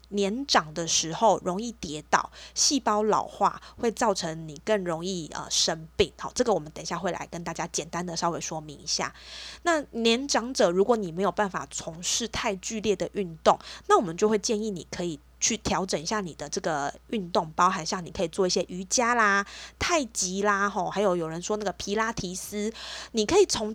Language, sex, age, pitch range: Chinese, female, 20-39, 170-215 Hz